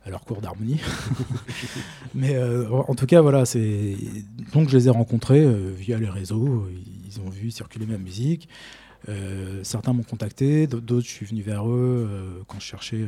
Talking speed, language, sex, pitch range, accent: 190 wpm, French, male, 100-120 Hz, French